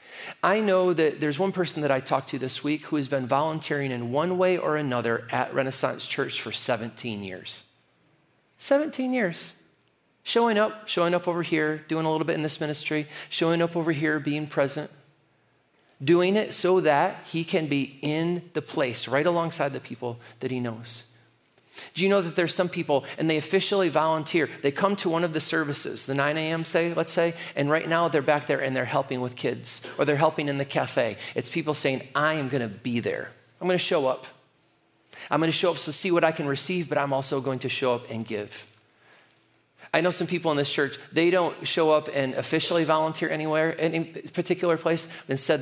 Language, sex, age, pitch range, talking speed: English, male, 40-59, 135-170 Hz, 210 wpm